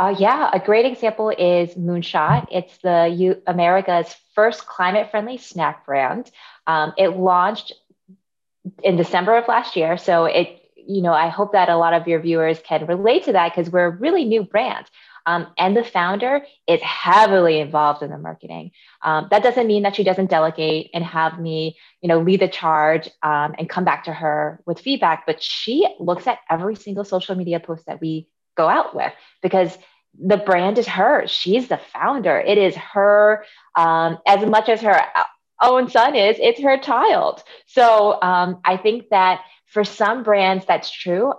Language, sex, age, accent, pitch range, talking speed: English, female, 20-39, American, 165-210 Hz, 180 wpm